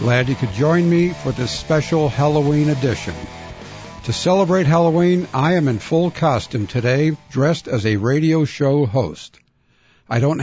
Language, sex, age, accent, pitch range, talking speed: English, male, 60-79, American, 125-160 Hz, 155 wpm